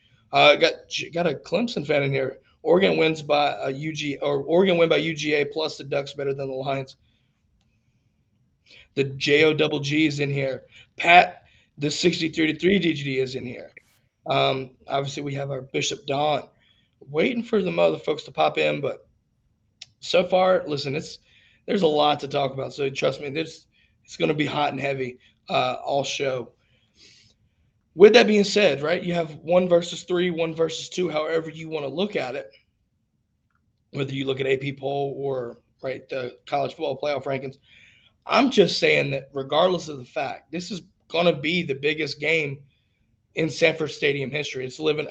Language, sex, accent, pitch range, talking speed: English, male, American, 135-165 Hz, 180 wpm